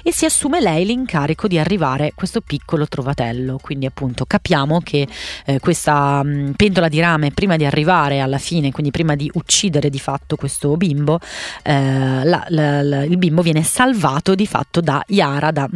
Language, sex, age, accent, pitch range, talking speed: Italian, female, 30-49, native, 145-175 Hz, 155 wpm